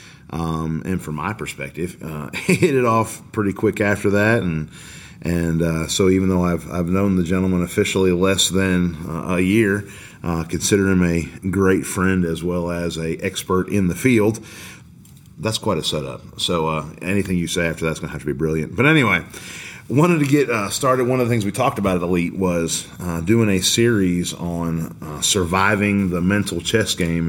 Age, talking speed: 30-49, 195 wpm